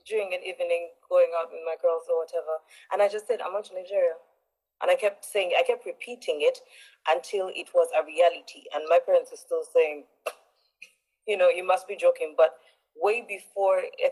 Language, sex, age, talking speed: English, female, 20-39, 200 wpm